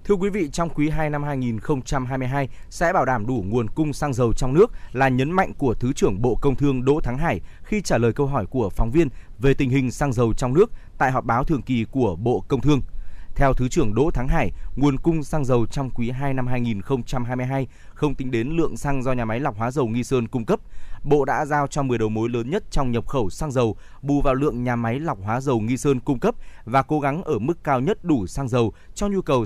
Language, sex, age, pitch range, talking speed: Vietnamese, male, 20-39, 120-145 Hz, 250 wpm